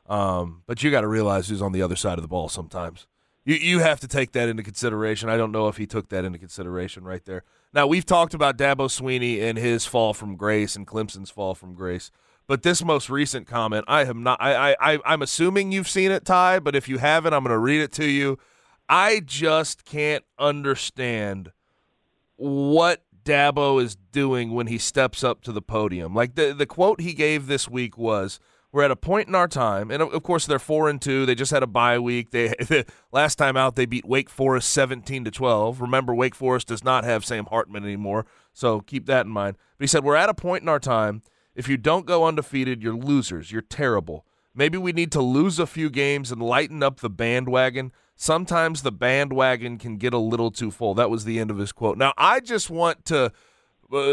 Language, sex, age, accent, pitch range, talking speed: English, male, 30-49, American, 110-150 Hz, 220 wpm